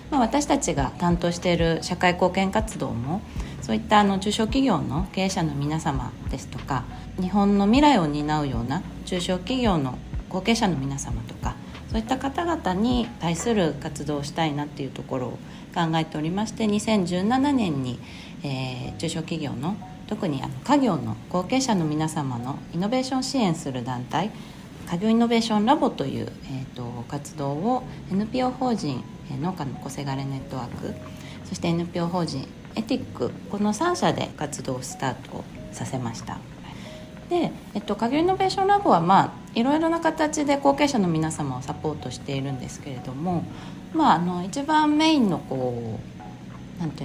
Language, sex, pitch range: Japanese, female, 145-230 Hz